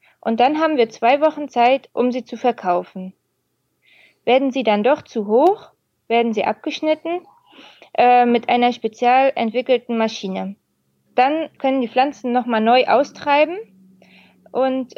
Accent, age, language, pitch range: German, 20-39, German, 215-260 Hz